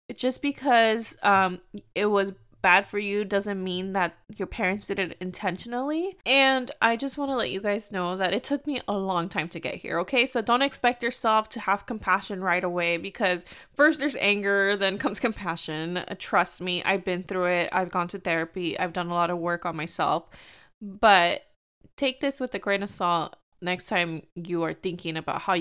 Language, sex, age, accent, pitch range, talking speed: English, female, 20-39, American, 180-235 Hz, 200 wpm